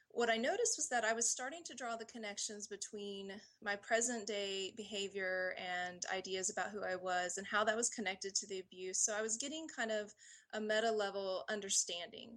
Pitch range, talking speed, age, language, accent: 195-240 Hz, 200 wpm, 20-39, English, American